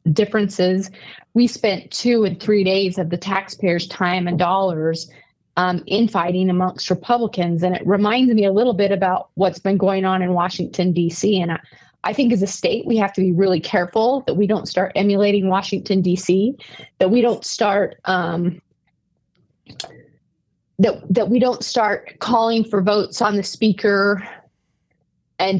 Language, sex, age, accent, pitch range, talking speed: English, female, 20-39, American, 175-205 Hz, 160 wpm